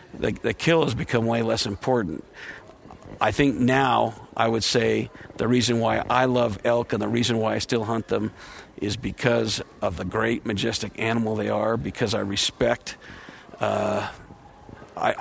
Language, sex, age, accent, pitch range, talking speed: English, male, 50-69, American, 110-130 Hz, 165 wpm